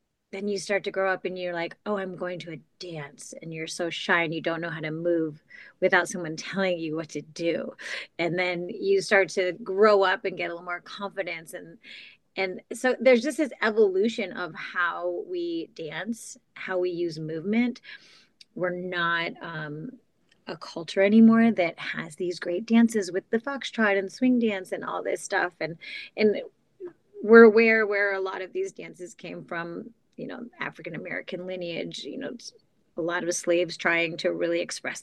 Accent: American